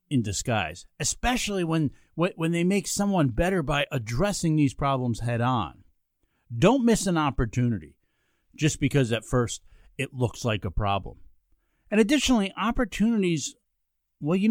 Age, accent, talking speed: 50-69, American, 130 wpm